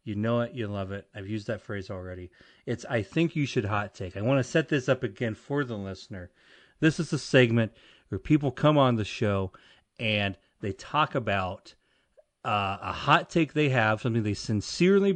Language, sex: English, male